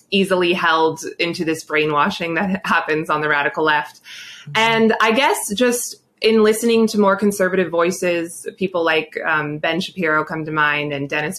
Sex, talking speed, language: female, 165 wpm, English